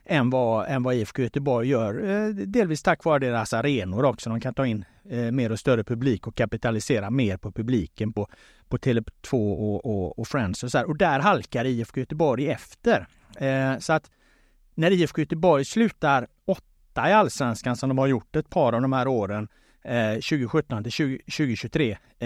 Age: 30-49